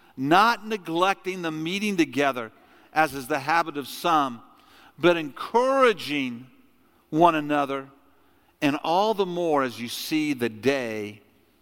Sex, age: male, 50-69